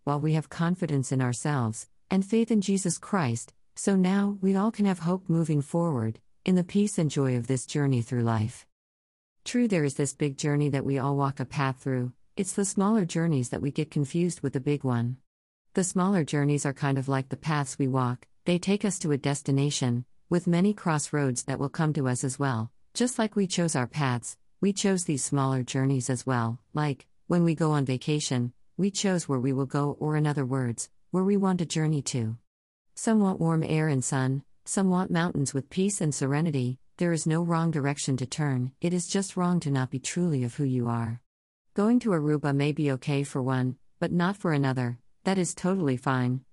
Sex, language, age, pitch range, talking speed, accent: female, English, 50-69, 130-175 Hz, 215 wpm, American